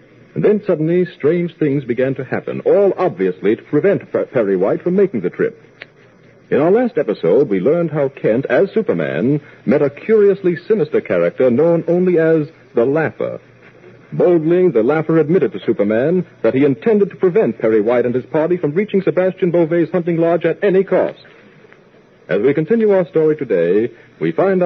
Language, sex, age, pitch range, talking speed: English, male, 60-79, 120-170 Hz, 175 wpm